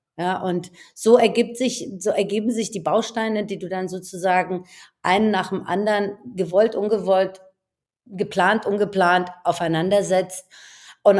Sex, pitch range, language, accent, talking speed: female, 175-205 Hz, German, German, 130 wpm